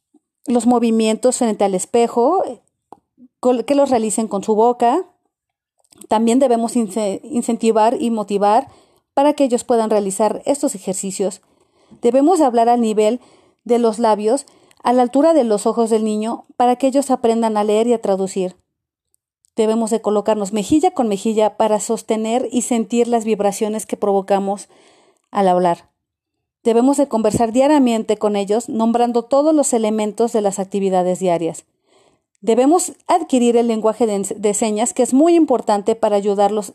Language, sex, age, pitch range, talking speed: Spanish, female, 40-59, 210-255 Hz, 150 wpm